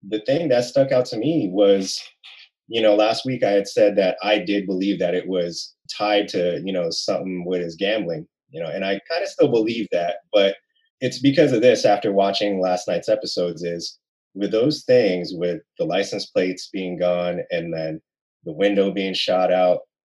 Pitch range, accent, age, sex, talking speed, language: 90-110 Hz, American, 20-39, male, 195 wpm, English